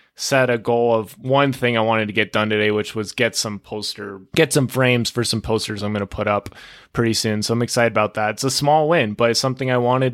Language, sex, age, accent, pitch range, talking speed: English, male, 20-39, American, 120-175 Hz, 260 wpm